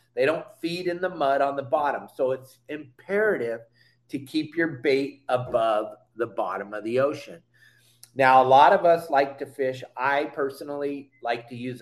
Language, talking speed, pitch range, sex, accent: English, 180 wpm, 120-145 Hz, male, American